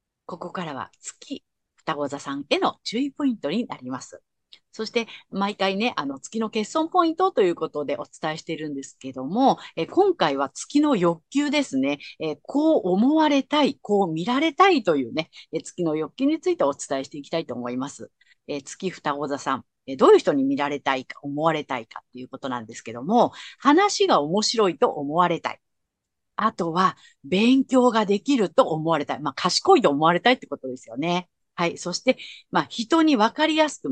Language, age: Japanese, 50-69